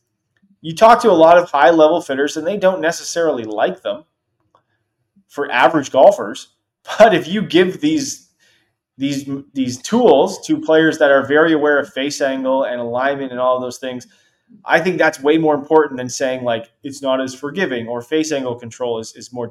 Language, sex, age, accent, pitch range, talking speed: English, male, 20-39, American, 130-185 Hz, 185 wpm